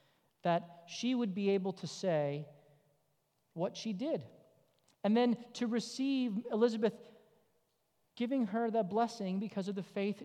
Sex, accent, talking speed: male, American, 135 wpm